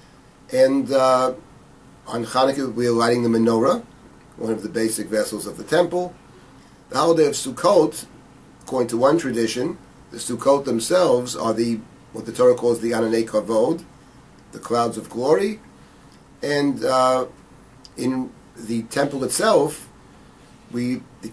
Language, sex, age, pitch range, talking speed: English, male, 40-59, 115-135 Hz, 140 wpm